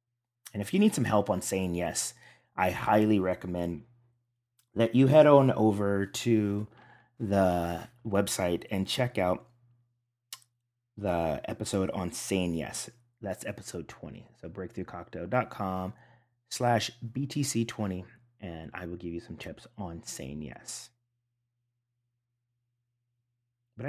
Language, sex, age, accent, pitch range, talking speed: English, male, 30-49, American, 95-120 Hz, 115 wpm